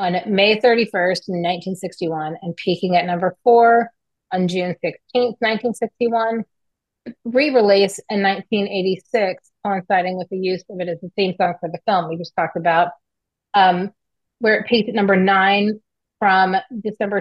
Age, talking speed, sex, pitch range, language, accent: 30-49, 145 wpm, female, 175-210 Hz, English, American